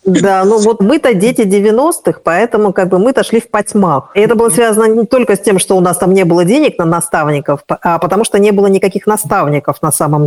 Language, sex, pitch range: Russian, female, 175-220 Hz